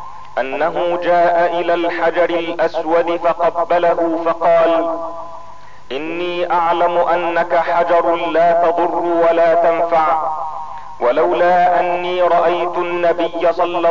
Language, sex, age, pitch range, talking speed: Arabic, male, 40-59, 160-170 Hz, 85 wpm